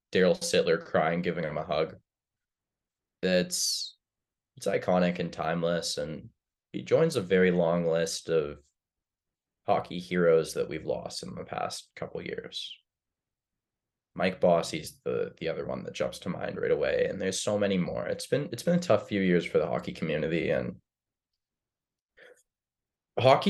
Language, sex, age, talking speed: English, male, 20-39, 160 wpm